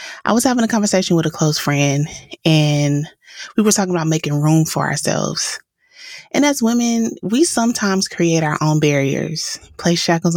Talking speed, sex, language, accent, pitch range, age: 170 wpm, female, English, American, 155-195 Hz, 20-39